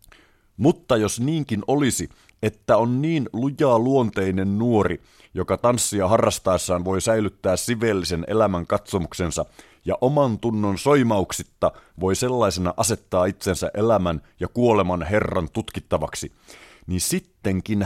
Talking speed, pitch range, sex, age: 110 wpm, 90-115 Hz, male, 30-49